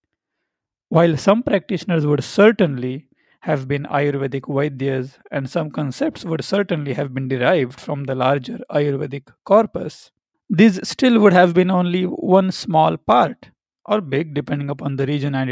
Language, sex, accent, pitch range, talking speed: English, male, Indian, 140-190 Hz, 145 wpm